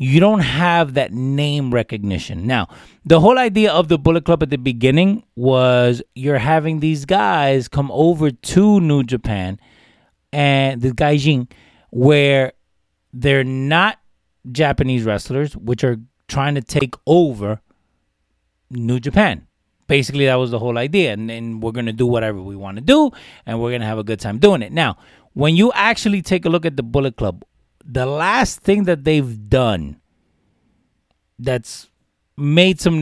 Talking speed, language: 160 wpm, English